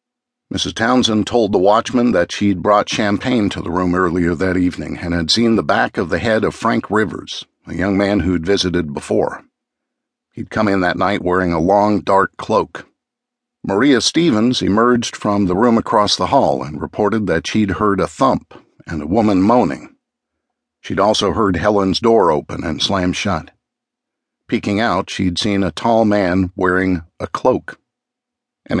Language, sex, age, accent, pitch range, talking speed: English, male, 50-69, American, 90-110 Hz, 170 wpm